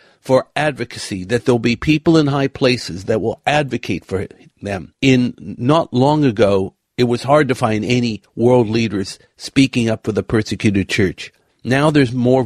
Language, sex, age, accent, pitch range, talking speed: English, male, 60-79, American, 115-145 Hz, 170 wpm